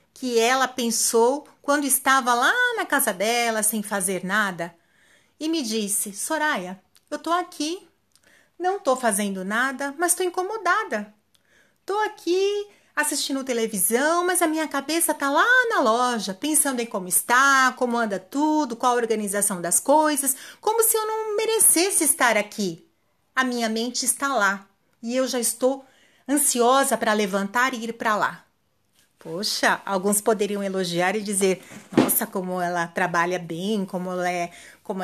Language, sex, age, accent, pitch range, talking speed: Portuguese, female, 40-59, Brazilian, 195-285 Hz, 145 wpm